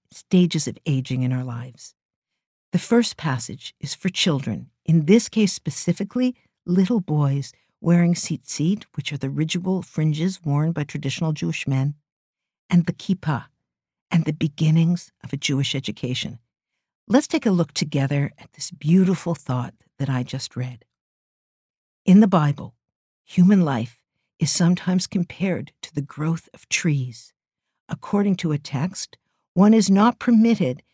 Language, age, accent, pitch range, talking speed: English, 50-69, American, 140-190 Hz, 145 wpm